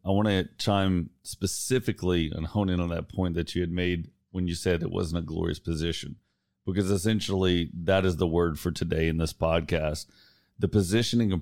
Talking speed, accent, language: 195 wpm, American, English